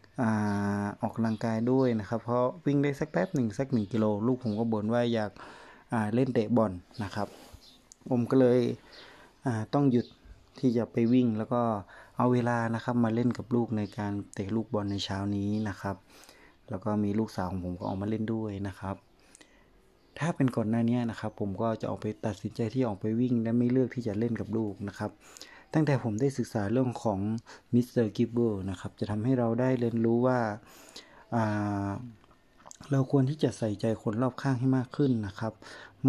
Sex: male